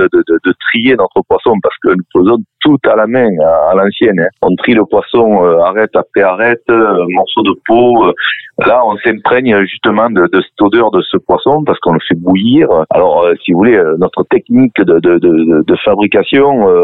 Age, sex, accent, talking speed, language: 40-59, male, French, 215 wpm, French